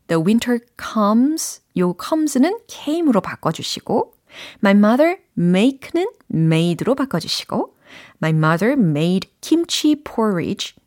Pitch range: 170-265 Hz